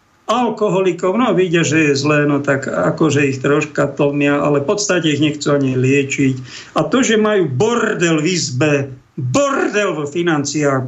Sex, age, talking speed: male, 50-69, 165 wpm